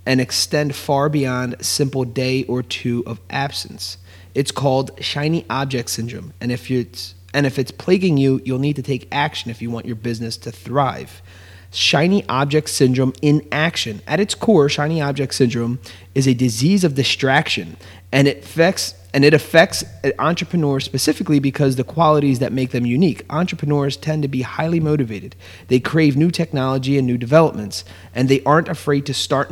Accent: American